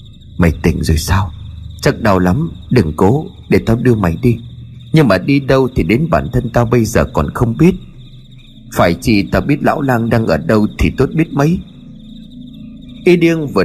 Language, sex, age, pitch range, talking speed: Vietnamese, male, 30-49, 95-145 Hz, 195 wpm